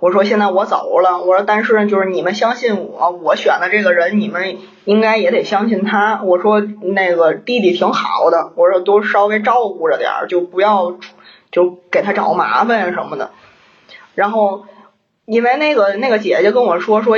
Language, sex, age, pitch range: Chinese, female, 20-39, 185-220 Hz